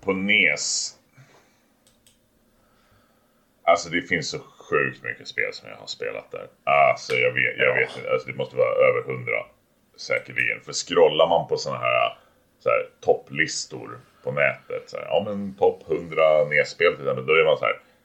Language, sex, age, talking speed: Swedish, male, 30-49, 175 wpm